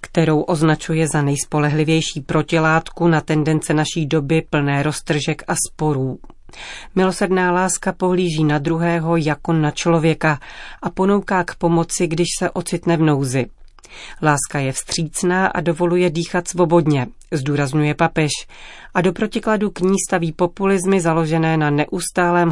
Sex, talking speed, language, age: female, 130 wpm, Czech, 40-59